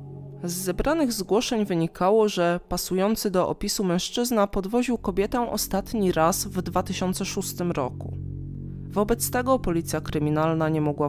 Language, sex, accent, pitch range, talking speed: Polish, female, native, 165-205 Hz, 120 wpm